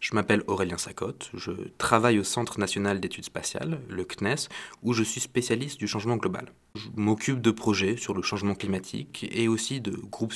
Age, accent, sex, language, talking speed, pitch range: 20-39, French, male, French, 185 wpm, 95-120 Hz